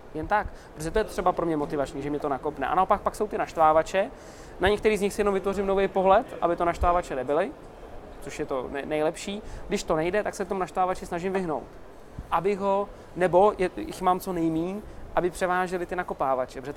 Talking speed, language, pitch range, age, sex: 210 wpm, Czech, 150-195 Hz, 20-39, male